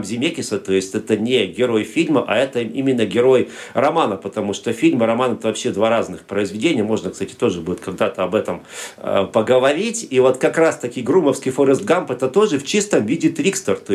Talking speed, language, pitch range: 190 wpm, Russian, 110-150 Hz